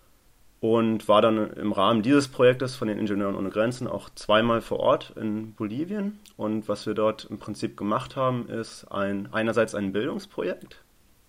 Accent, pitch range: German, 100-115 Hz